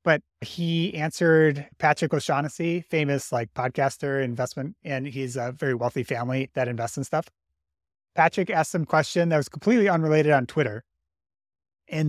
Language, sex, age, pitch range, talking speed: English, male, 30-49, 125-155 Hz, 150 wpm